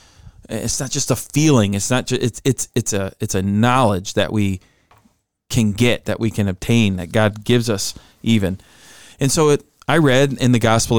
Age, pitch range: 20-39, 100-125 Hz